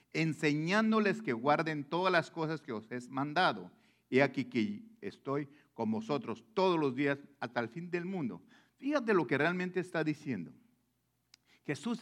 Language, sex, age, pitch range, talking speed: English, male, 50-69, 160-220 Hz, 150 wpm